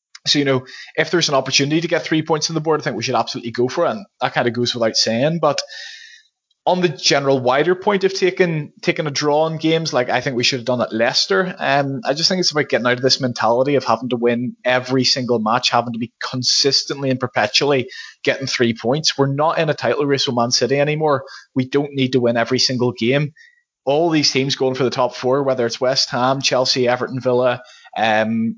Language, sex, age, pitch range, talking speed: English, male, 20-39, 125-160 Hz, 235 wpm